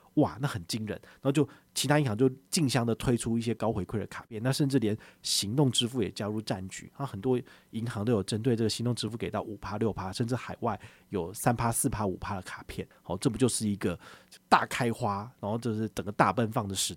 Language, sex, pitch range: Chinese, male, 105-140 Hz